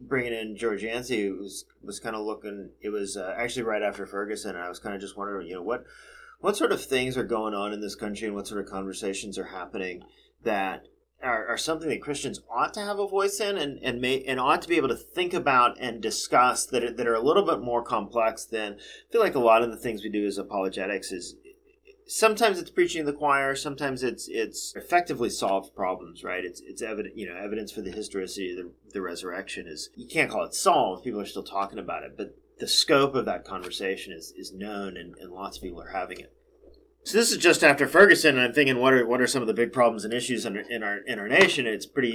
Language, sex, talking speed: English, male, 250 wpm